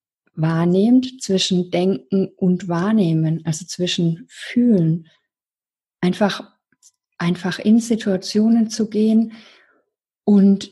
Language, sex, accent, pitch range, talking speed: German, female, German, 180-230 Hz, 85 wpm